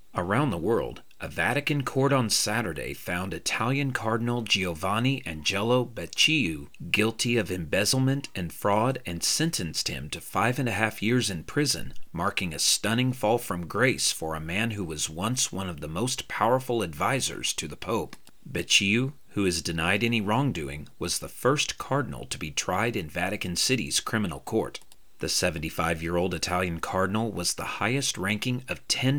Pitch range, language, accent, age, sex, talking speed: 90-125 Hz, English, American, 40-59, male, 160 wpm